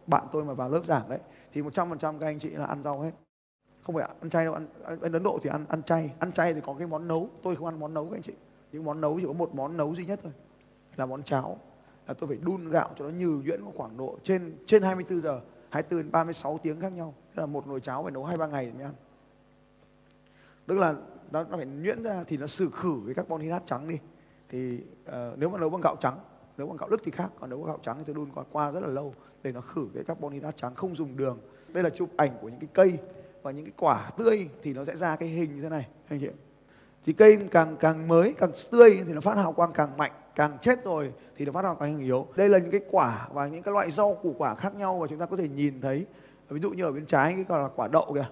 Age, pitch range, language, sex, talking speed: 20-39, 140-175 Hz, Vietnamese, male, 265 wpm